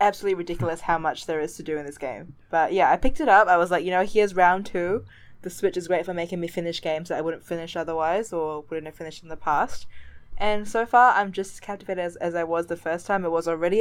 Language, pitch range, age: English, 160-185 Hz, 20-39